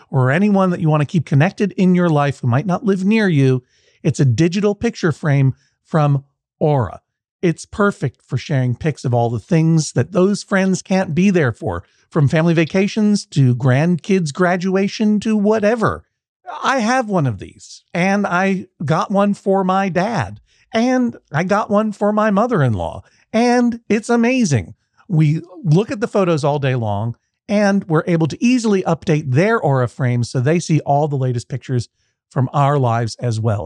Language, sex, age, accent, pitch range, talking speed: English, male, 50-69, American, 130-195 Hz, 175 wpm